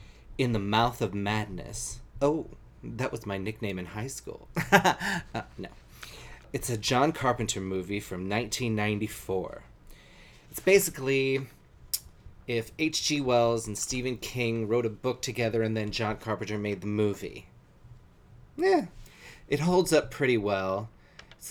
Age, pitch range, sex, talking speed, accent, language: 30-49, 100-130 Hz, male, 135 wpm, American, English